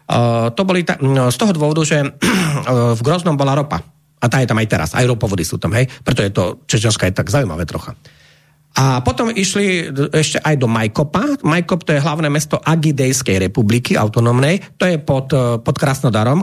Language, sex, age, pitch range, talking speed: Slovak, male, 40-59, 125-160 Hz, 190 wpm